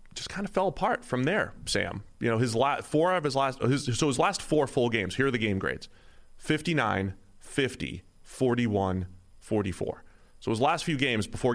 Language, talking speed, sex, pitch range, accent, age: English, 190 wpm, male, 95-120 Hz, American, 30-49